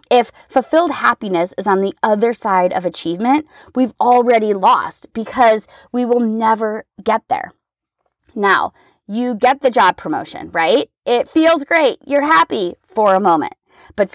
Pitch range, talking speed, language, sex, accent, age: 190-270 Hz, 150 wpm, English, female, American, 30-49